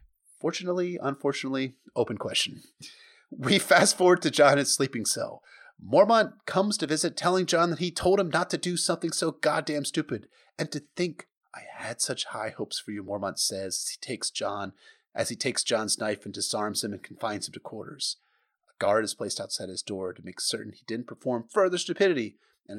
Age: 30-49